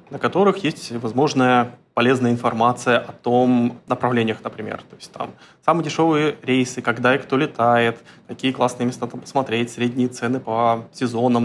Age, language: 20-39, Russian